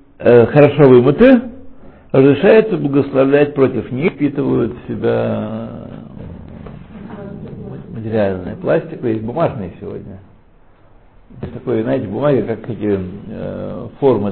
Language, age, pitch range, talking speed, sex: Russian, 60-79, 110-145 Hz, 85 wpm, male